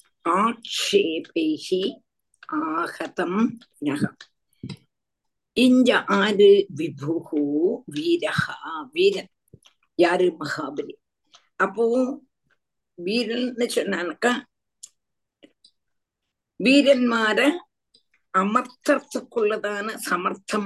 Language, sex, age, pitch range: Tamil, female, 50-69, 190-270 Hz